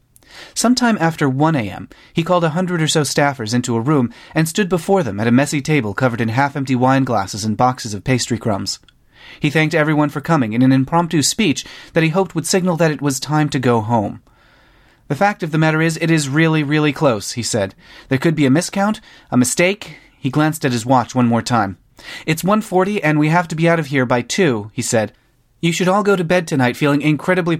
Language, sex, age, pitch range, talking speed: English, male, 30-49, 125-165 Hz, 230 wpm